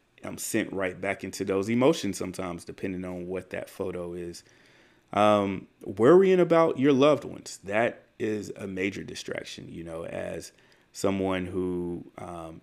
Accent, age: American, 30-49